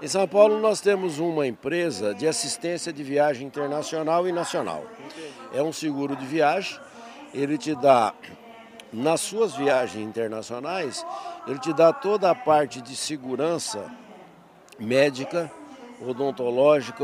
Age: 60-79